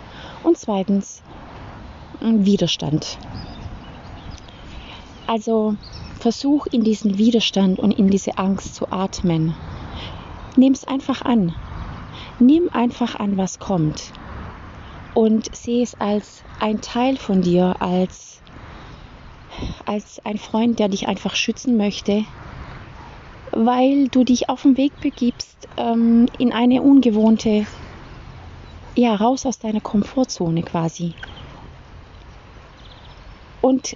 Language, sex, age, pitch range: German, female, 30-49, 185-240 Hz